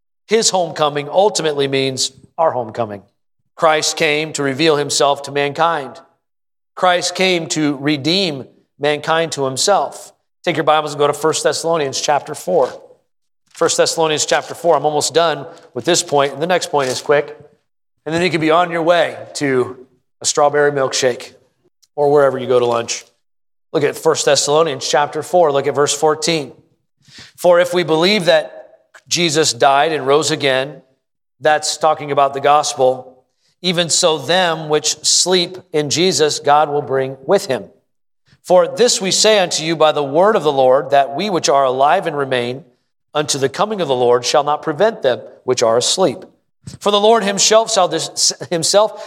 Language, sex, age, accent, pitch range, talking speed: English, male, 40-59, American, 140-180 Hz, 170 wpm